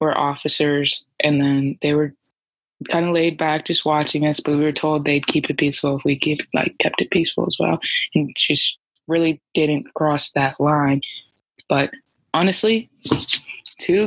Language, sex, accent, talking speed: English, female, American, 170 wpm